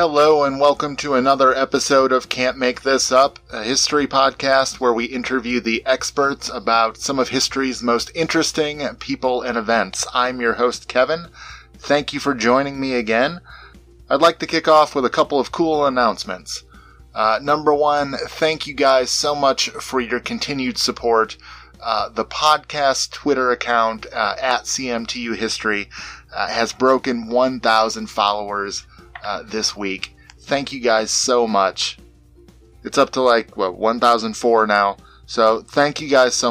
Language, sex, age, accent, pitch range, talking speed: English, male, 30-49, American, 110-140 Hz, 155 wpm